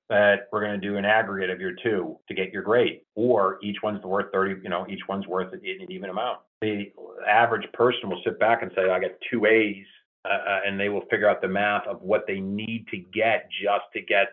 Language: English